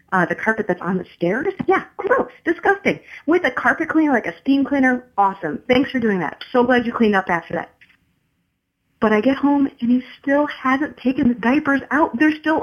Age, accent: 30-49, American